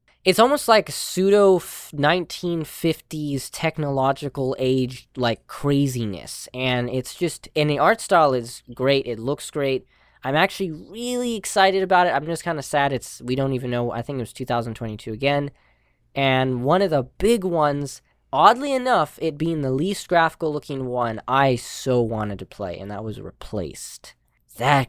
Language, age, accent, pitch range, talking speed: English, 10-29, American, 125-160 Hz, 160 wpm